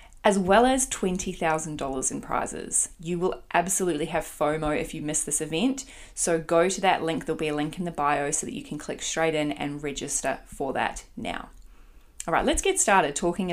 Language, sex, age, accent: English, female, 20-39, Australian